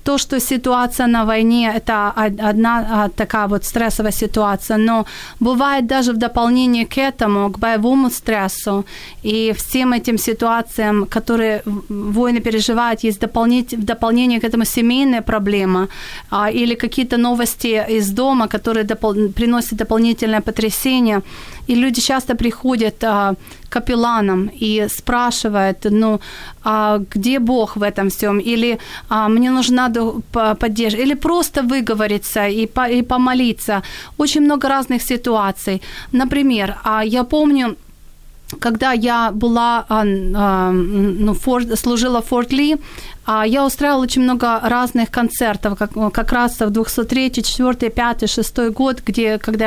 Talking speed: 130 wpm